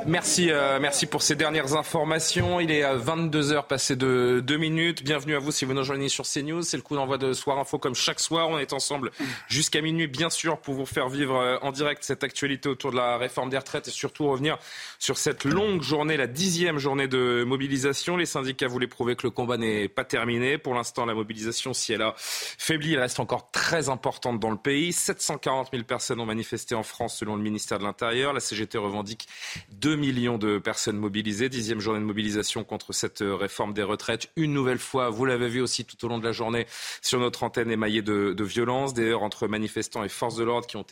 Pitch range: 110-140 Hz